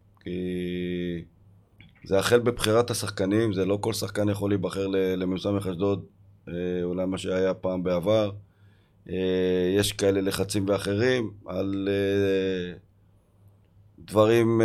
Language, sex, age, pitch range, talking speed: Hebrew, male, 30-49, 90-105 Hz, 100 wpm